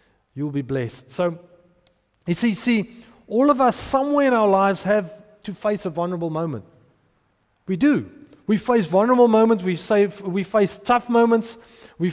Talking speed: 170 wpm